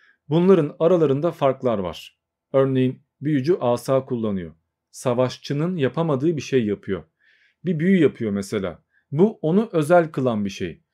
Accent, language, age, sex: native, Turkish, 40-59, male